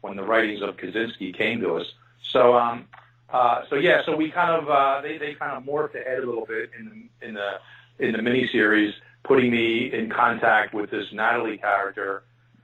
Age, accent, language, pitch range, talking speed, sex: 50-69, American, English, 115-140 Hz, 200 wpm, male